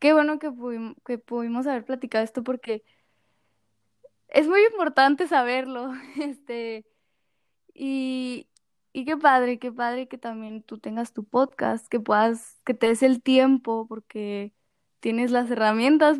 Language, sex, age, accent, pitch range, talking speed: Spanish, female, 10-29, Mexican, 220-260 Hz, 140 wpm